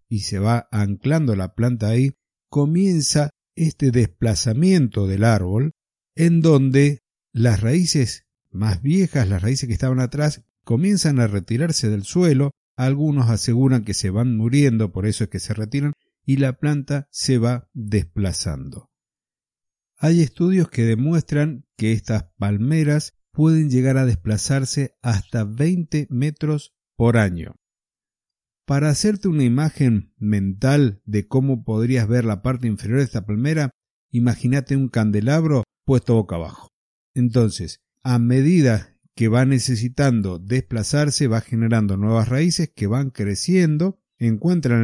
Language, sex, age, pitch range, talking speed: Spanish, male, 50-69, 110-145 Hz, 130 wpm